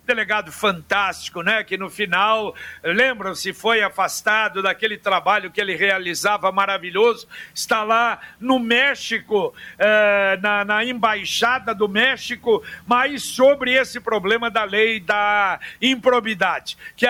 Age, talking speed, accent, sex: 60-79, 120 wpm, Brazilian, male